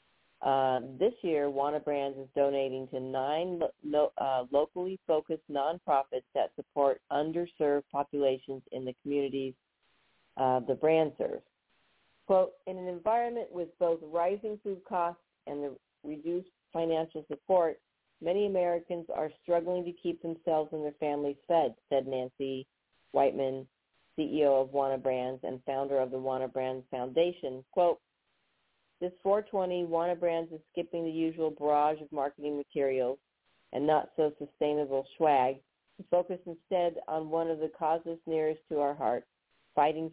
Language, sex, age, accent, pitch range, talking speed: English, female, 50-69, American, 140-170 Hz, 135 wpm